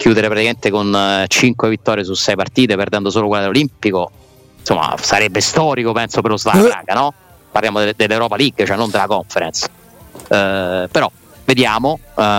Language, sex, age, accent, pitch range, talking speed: Italian, male, 30-49, native, 100-125 Hz, 155 wpm